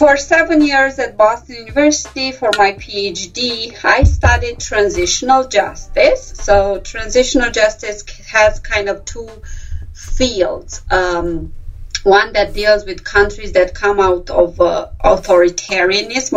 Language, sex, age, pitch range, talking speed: English, female, 30-49, 190-240 Hz, 120 wpm